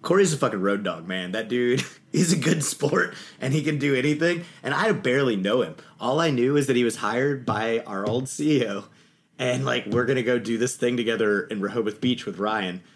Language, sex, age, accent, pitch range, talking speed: English, male, 30-49, American, 110-145 Hz, 225 wpm